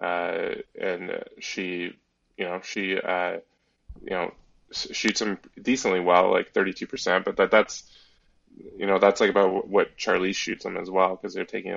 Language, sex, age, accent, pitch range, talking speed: English, male, 20-39, American, 95-110 Hz, 175 wpm